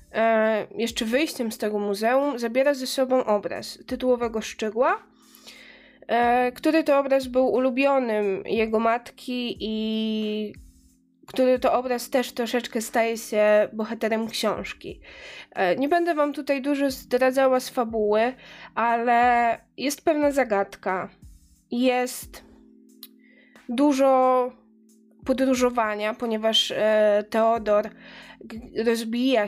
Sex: female